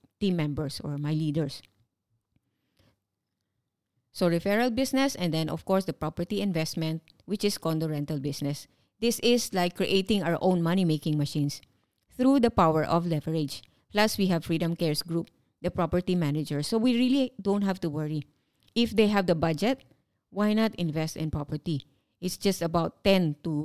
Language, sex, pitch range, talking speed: English, female, 150-195 Hz, 160 wpm